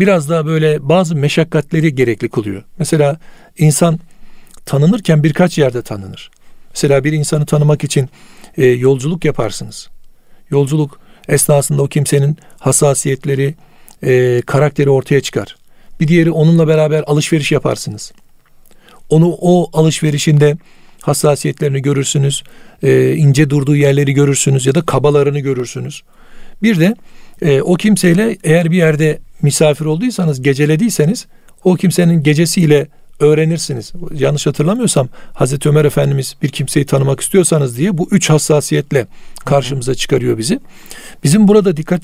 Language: Turkish